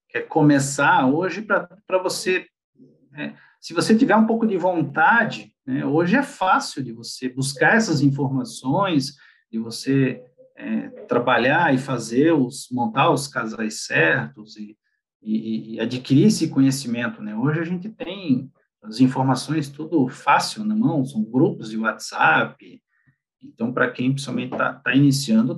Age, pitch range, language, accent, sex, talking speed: 50-69, 130-220 Hz, Portuguese, Brazilian, male, 145 wpm